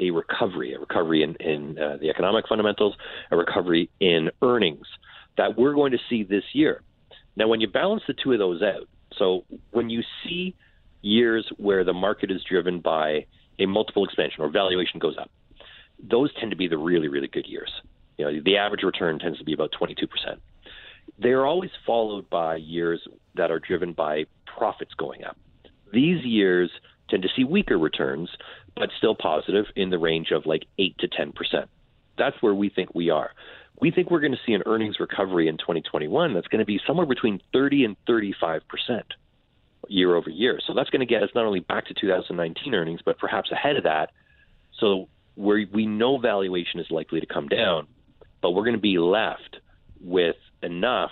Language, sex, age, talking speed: English, male, 40-59, 190 wpm